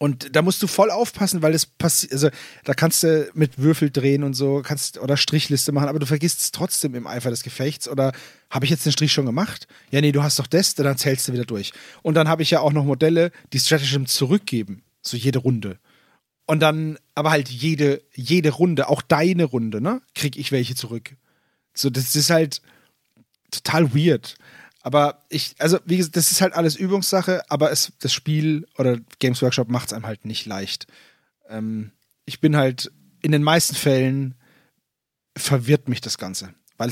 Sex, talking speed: male, 195 wpm